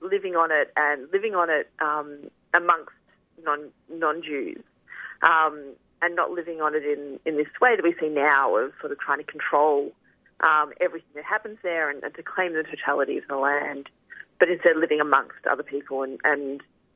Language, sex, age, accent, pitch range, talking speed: English, female, 30-49, Australian, 150-180 Hz, 180 wpm